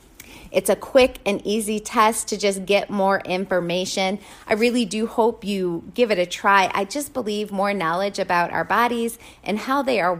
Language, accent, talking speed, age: English, American, 190 wpm, 40-59